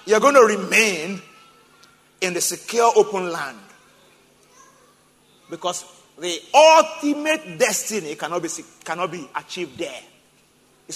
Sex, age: male, 50-69